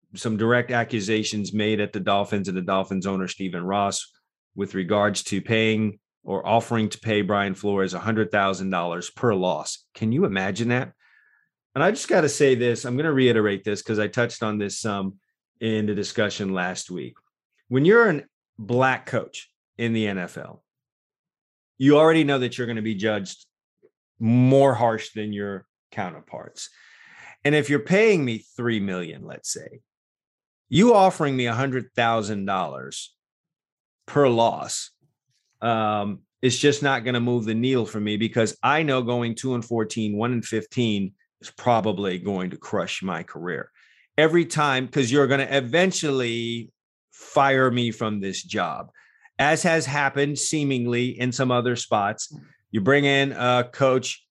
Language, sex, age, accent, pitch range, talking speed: English, male, 30-49, American, 105-130 Hz, 160 wpm